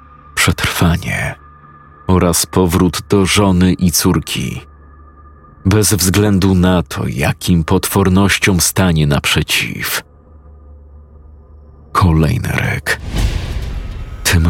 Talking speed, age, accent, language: 75 wpm, 40-59, native, Polish